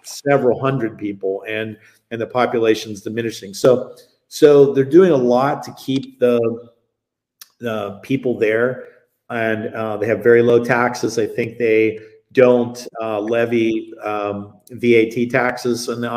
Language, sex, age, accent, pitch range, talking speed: English, male, 40-59, American, 115-135 Hz, 140 wpm